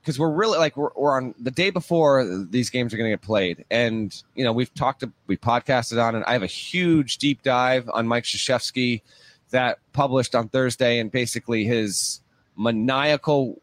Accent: American